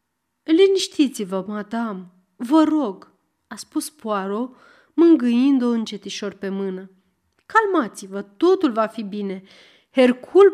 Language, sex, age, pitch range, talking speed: Romanian, female, 30-49, 200-275 Hz, 95 wpm